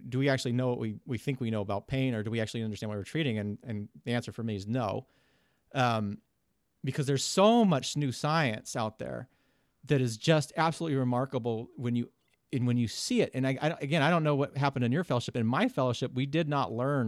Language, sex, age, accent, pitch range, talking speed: English, male, 40-59, American, 110-135 Hz, 240 wpm